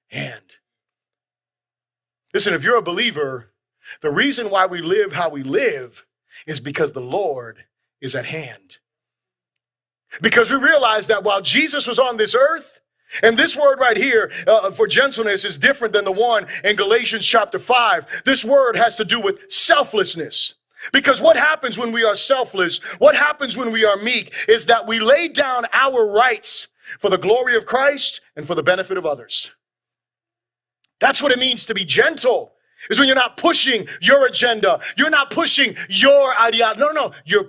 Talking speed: 175 wpm